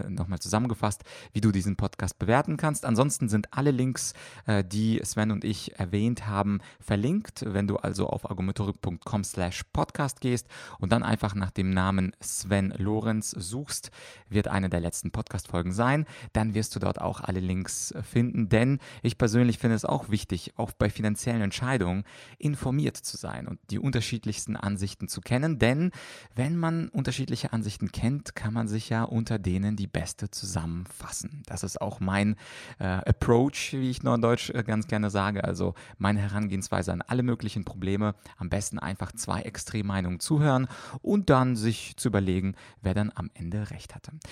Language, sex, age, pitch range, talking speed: German, male, 30-49, 95-120 Hz, 165 wpm